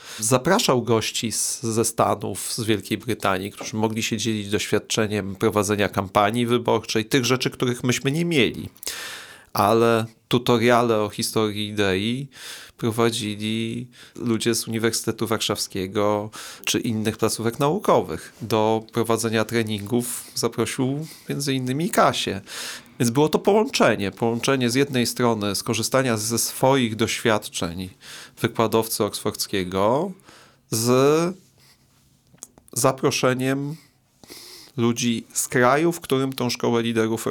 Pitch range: 105-125 Hz